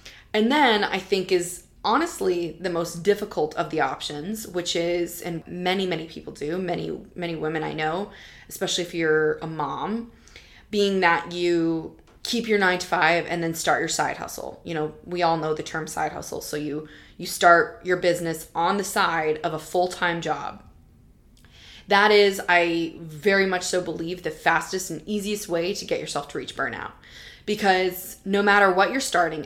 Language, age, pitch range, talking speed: English, 20-39, 165-190 Hz, 180 wpm